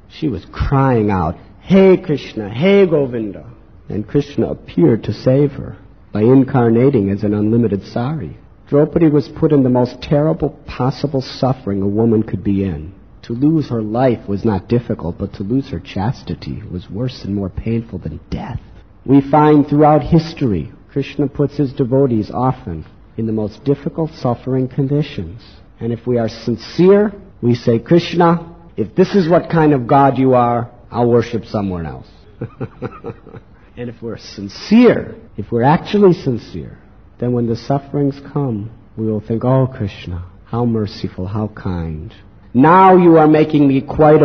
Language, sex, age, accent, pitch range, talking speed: English, male, 50-69, American, 100-140 Hz, 160 wpm